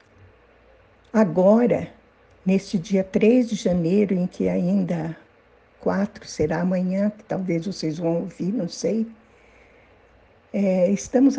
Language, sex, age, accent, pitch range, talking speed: Portuguese, female, 60-79, Brazilian, 185-245 Hz, 105 wpm